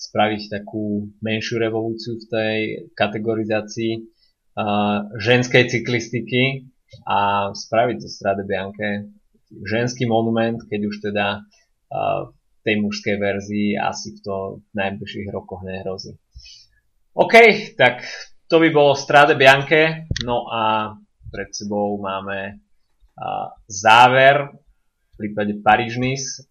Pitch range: 105-125 Hz